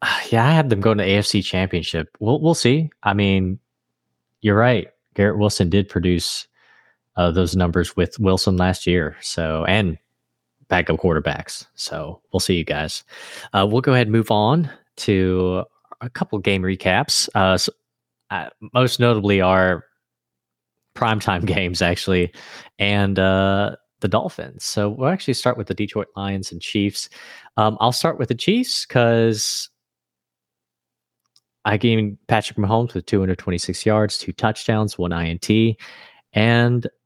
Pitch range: 90-110 Hz